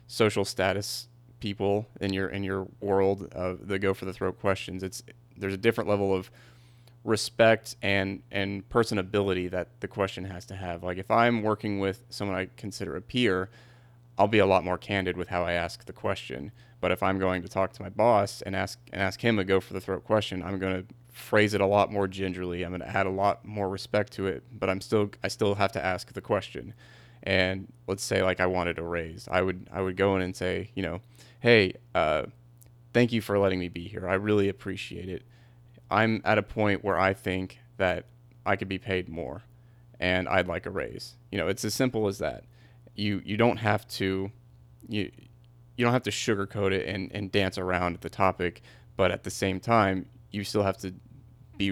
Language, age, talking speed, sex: English, 30-49, 215 wpm, male